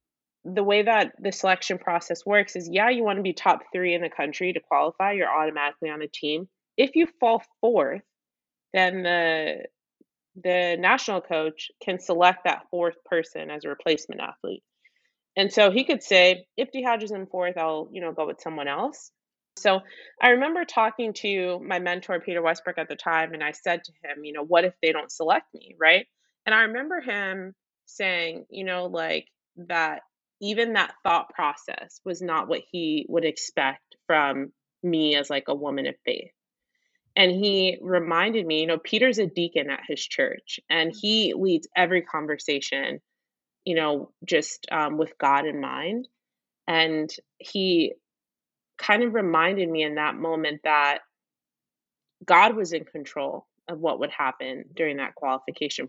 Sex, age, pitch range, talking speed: female, 30-49, 160-205 Hz, 170 wpm